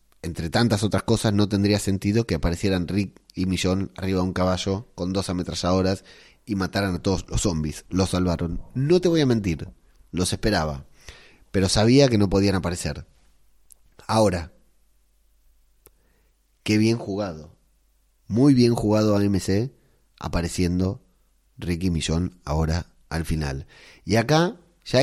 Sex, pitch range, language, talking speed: male, 90-130 Hz, Spanish, 140 wpm